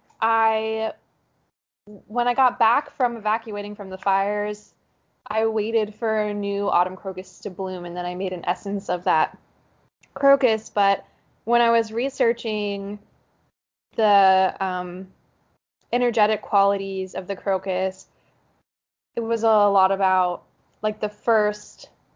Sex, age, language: female, 10-29, English